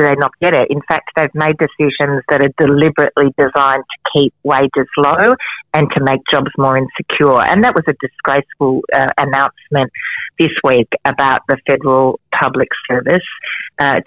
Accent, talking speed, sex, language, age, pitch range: Australian, 160 wpm, female, English, 40-59, 130-145 Hz